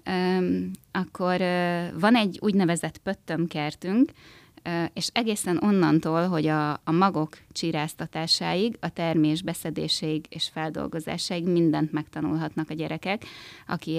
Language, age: Hungarian, 20-39